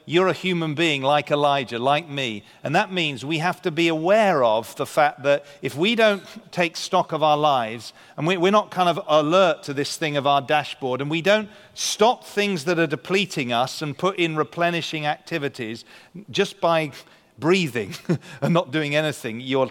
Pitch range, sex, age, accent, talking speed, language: 140-175 Hz, male, 40-59, British, 190 wpm, English